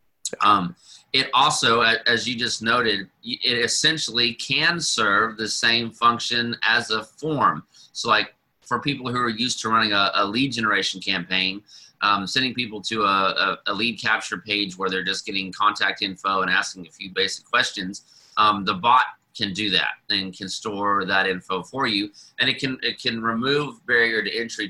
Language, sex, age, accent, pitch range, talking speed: English, male, 30-49, American, 100-120 Hz, 180 wpm